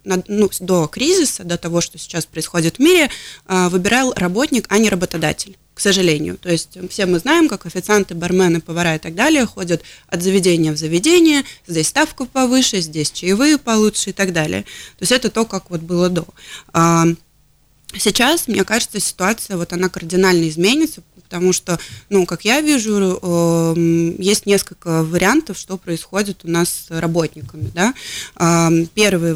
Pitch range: 165-210 Hz